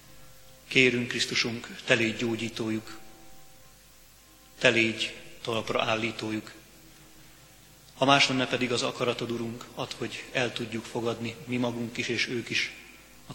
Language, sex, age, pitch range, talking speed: Hungarian, male, 30-49, 115-125 Hz, 125 wpm